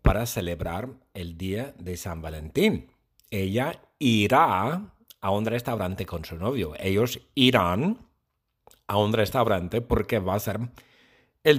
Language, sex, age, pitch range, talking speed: English, male, 50-69, 90-125 Hz, 130 wpm